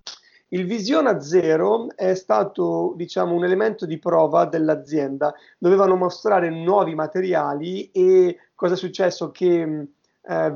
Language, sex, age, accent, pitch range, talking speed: Italian, male, 30-49, native, 160-195 Hz, 125 wpm